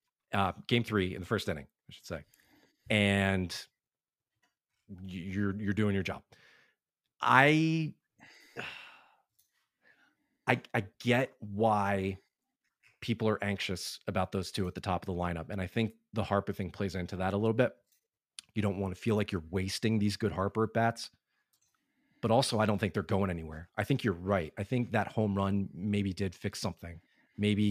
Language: English